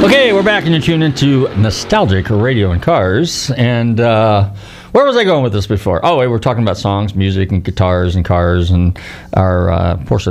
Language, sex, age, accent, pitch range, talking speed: English, male, 40-59, American, 90-115 Hz, 210 wpm